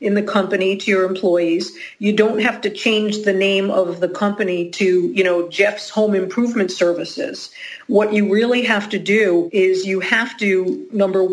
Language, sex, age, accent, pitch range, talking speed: English, female, 50-69, American, 185-220 Hz, 180 wpm